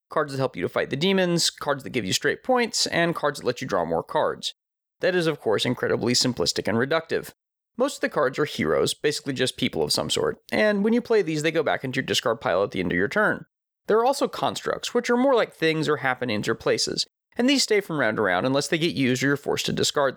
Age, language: 30-49, English